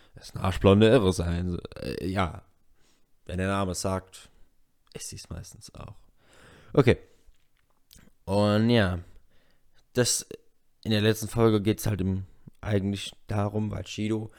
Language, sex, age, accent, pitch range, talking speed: German, male, 20-39, German, 95-125 Hz, 135 wpm